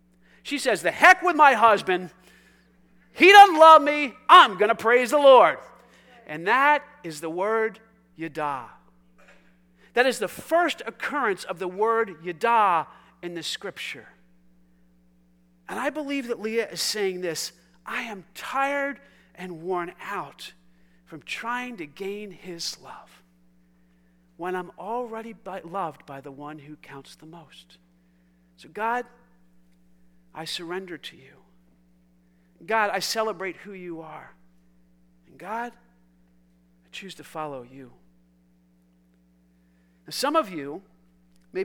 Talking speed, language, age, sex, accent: 130 wpm, English, 40-59, male, American